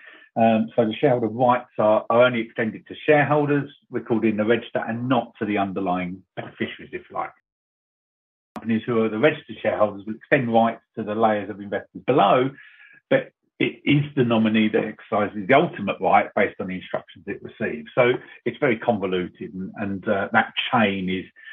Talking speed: 180 wpm